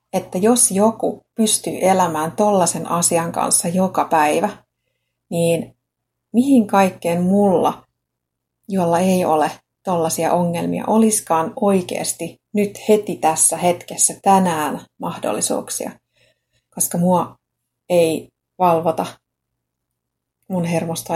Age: 30-49